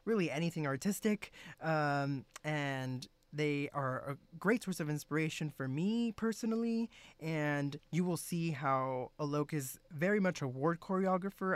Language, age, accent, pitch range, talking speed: English, 20-39, American, 140-175 Hz, 140 wpm